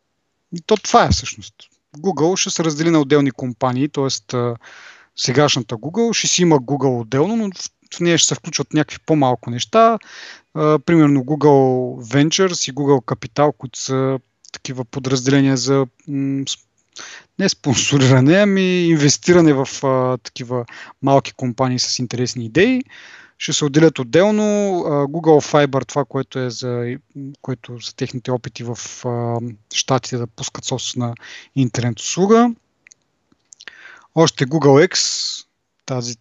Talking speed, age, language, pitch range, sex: 125 wpm, 30-49, Bulgarian, 125-155 Hz, male